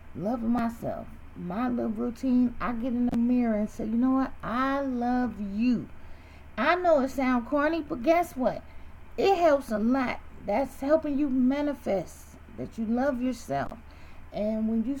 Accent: American